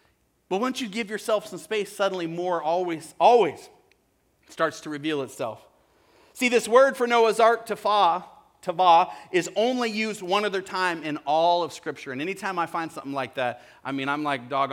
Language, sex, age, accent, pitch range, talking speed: English, male, 40-59, American, 145-200 Hz, 180 wpm